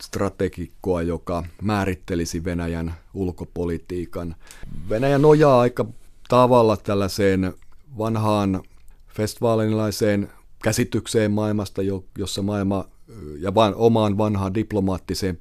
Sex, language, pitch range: male, Finnish, 90-110 Hz